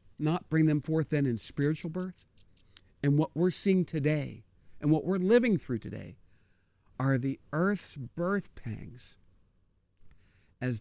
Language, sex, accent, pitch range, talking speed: English, male, American, 95-145 Hz, 140 wpm